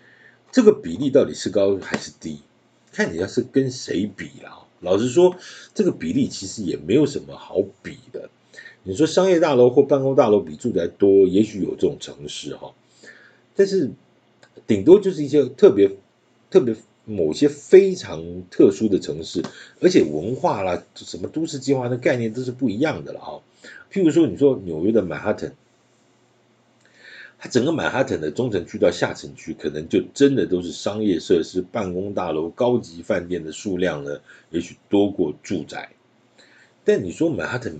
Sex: male